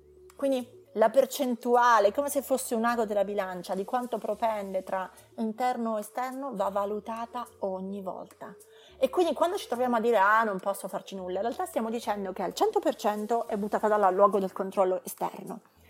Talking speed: 175 wpm